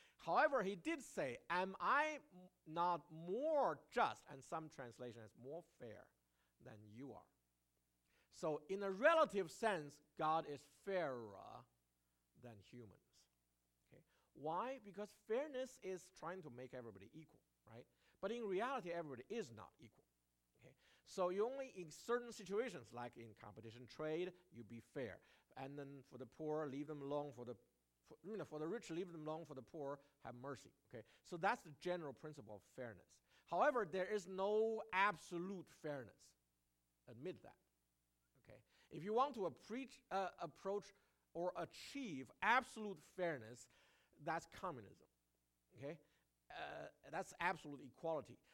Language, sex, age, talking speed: English, male, 50-69, 150 wpm